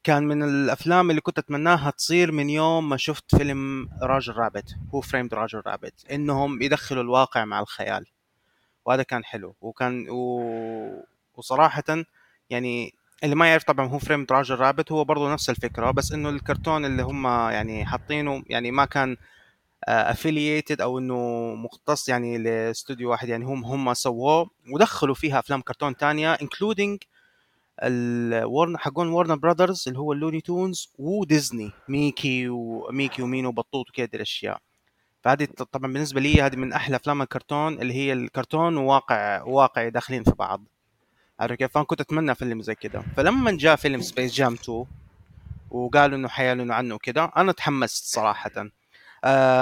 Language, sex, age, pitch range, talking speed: Arabic, male, 20-39, 125-150 Hz, 145 wpm